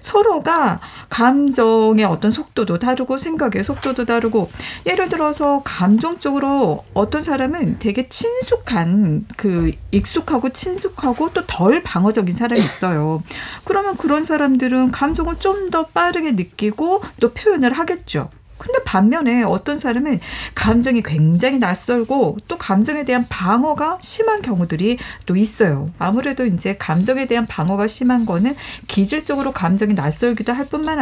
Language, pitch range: Korean, 200-290 Hz